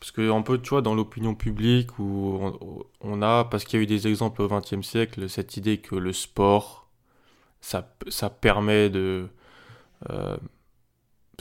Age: 20-39